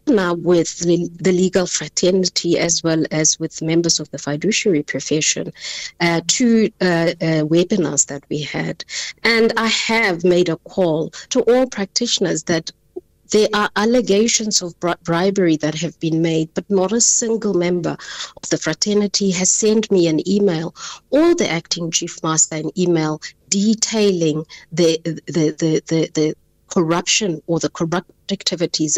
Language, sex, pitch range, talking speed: English, female, 160-200 Hz, 155 wpm